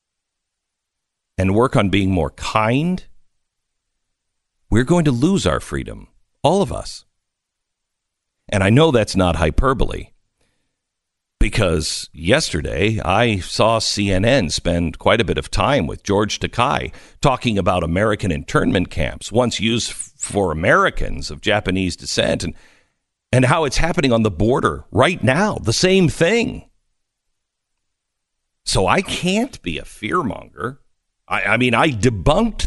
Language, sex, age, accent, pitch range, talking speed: English, male, 50-69, American, 95-135 Hz, 130 wpm